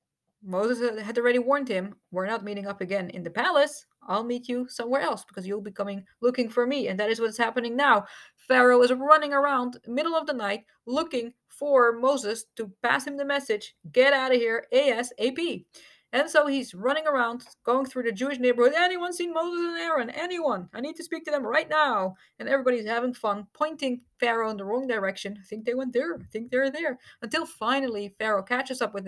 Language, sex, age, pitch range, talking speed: English, female, 30-49, 225-295 Hz, 210 wpm